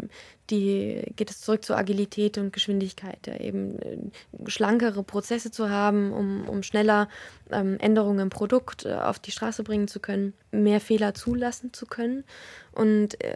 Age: 20-39